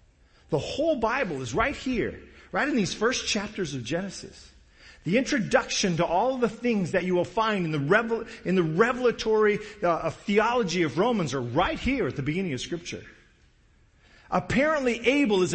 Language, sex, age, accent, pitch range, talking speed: English, male, 40-59, American, 185-265 Hz, 170 wpm